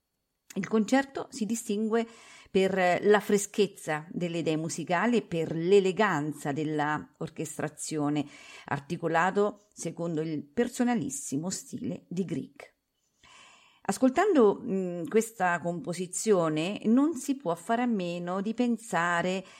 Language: Italian